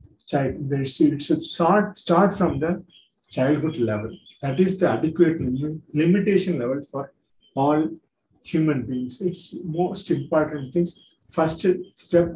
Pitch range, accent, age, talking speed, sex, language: 135-180 Hz, native, 50-69, 120 wpm, male, Tamil